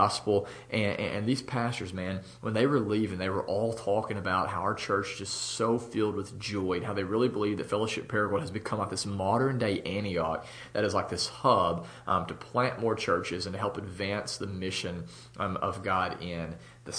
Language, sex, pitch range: English, male, 100-120 Hz